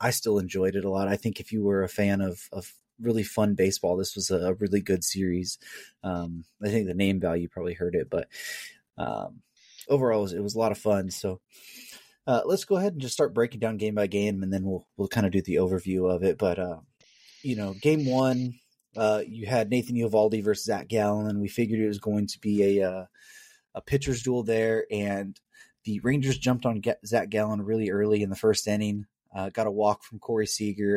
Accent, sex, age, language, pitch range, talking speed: American, male, 20-39, English, 100-115 Hz, 225 wpm